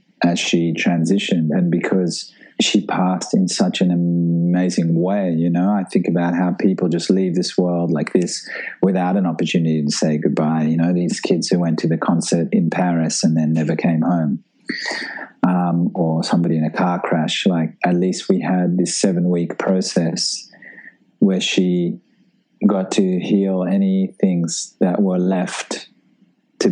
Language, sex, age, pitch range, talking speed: English, male, 30-49, 85-95 Hz, 165 wpm